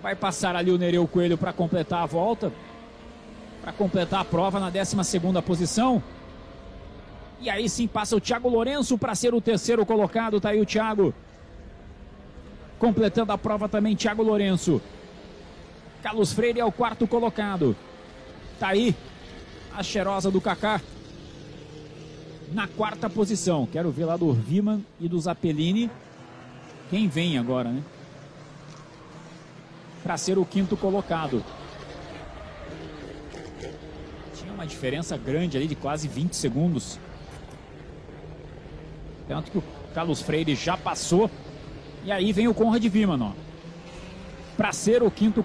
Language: Portuguese